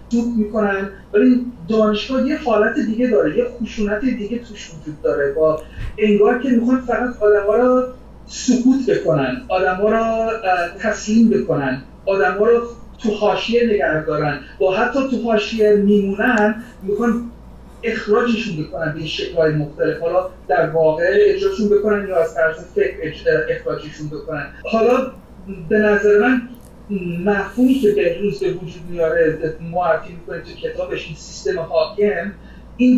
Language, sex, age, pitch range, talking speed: Persian, male, 40-59, 175-235 Hz, 130 wpm